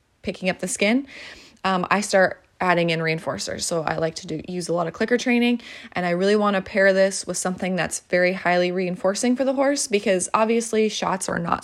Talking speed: 205 wpm